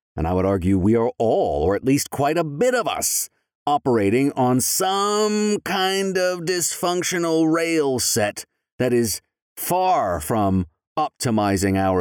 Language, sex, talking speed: English, male, 145 wpm